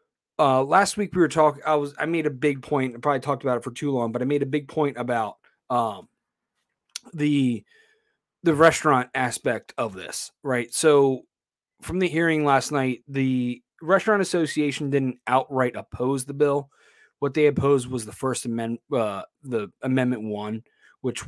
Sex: male